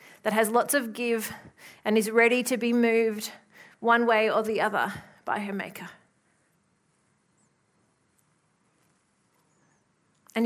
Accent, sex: Australian, female